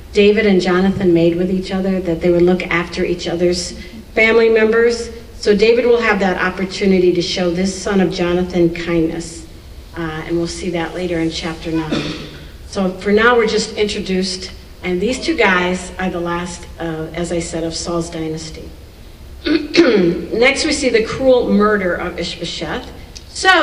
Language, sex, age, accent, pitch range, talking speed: English, female, 50-69, American, 175-230 Hz, 170 wpm